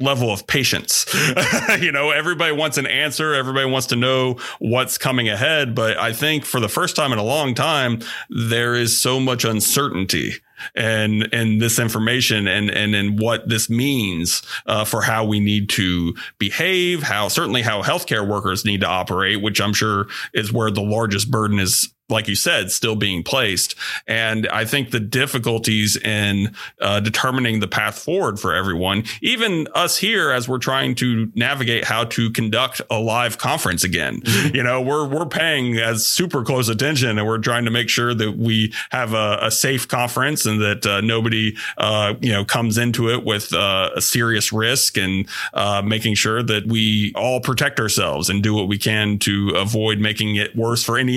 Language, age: English, 40-59